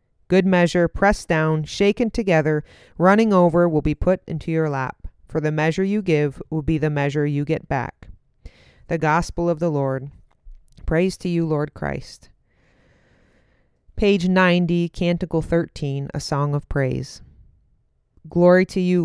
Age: 40-59